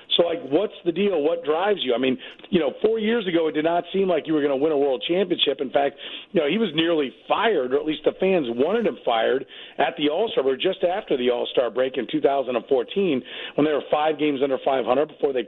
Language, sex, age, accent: English, male, 40-59, American